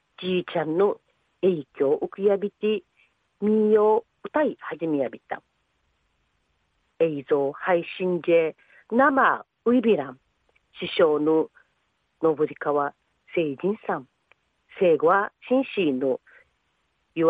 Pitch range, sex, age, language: 160-255 Hz, female, 40-59, Japanese